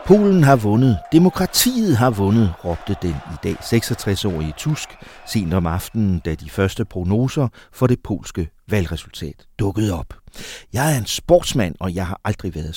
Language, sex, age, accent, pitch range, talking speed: Danish, male, 60-79, native, 85-120 Hz, 160 wpm